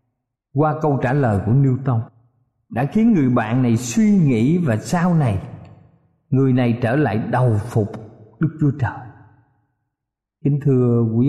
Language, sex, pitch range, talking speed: Vietnamese, male, 110-160 Hz, 155 wpm